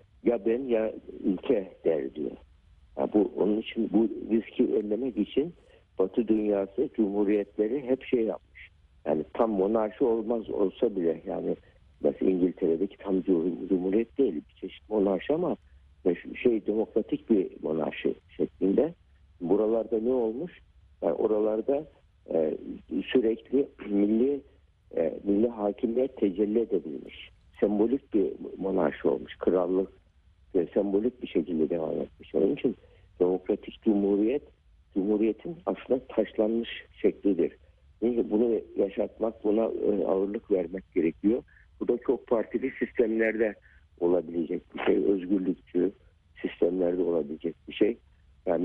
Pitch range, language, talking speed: 95-115 Hz, Turkish, 115 wpm